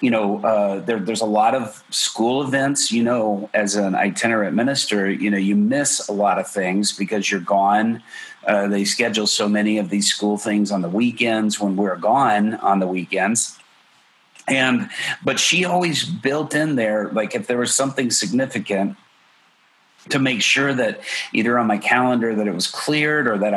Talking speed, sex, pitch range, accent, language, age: 180 wpm, male, 100-125 Hz, American, English, 40-59